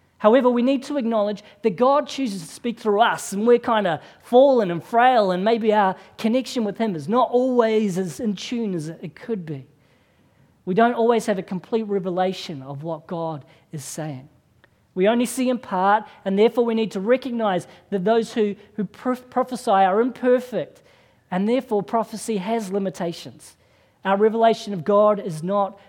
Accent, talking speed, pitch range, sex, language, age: Australian, 175 wpm, 175-230 Hz, female, English, 40-59